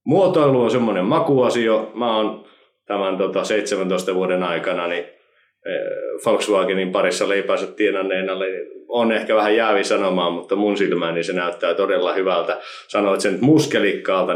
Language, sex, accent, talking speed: Finnish, male, native, 135 wpm